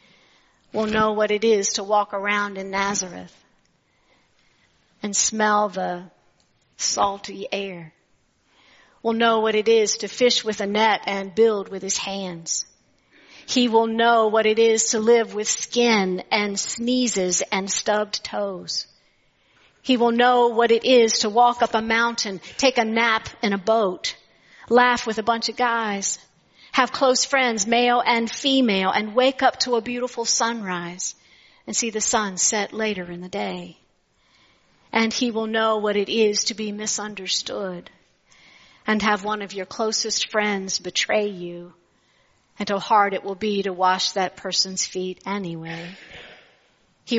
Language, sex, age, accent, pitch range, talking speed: English, female, 50-69, American, 195-230 Hz, 155 wpm